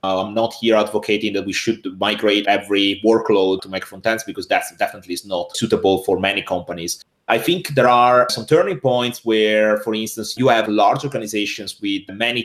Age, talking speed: 30-49, 175 wpm